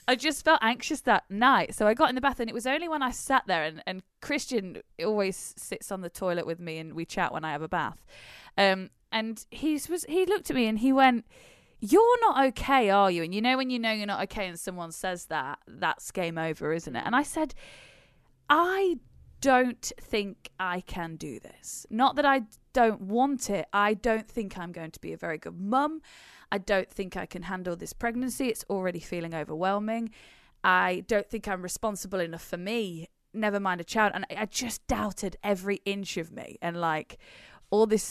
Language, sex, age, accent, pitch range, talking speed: English, female, 20-39, British, 180-245 Hz, 215 wpm